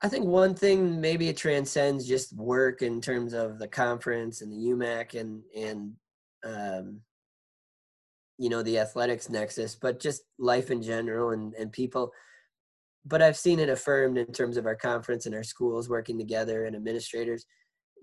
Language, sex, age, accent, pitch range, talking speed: English, male, 20-39, American, 115-135 Hz, 165 wpm